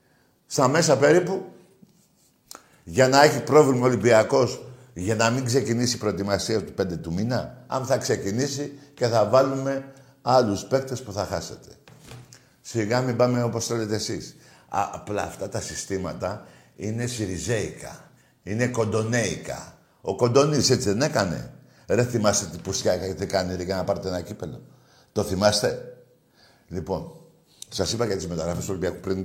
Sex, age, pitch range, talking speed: male, 60-79, 105-145 Hz, 150 wpm